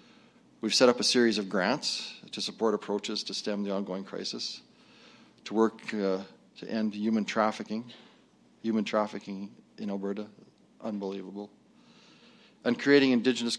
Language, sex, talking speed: English, male, 130 wpm